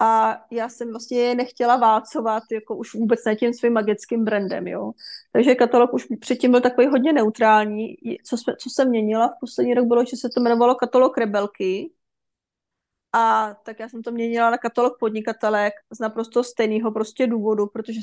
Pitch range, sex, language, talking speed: 225-250 Hz, female, Czech, 175 wpm